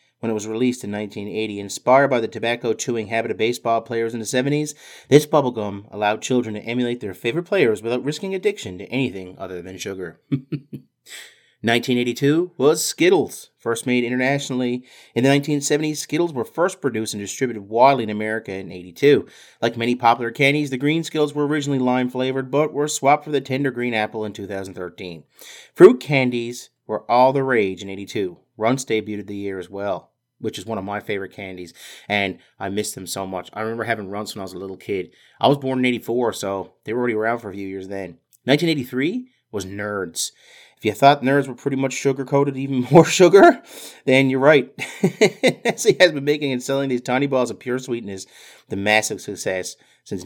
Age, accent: 30-49, American